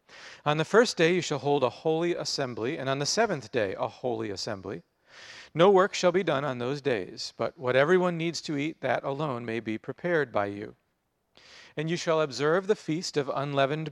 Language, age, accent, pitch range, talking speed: English, 40-59, American, 130-180 Hz, 205 wpm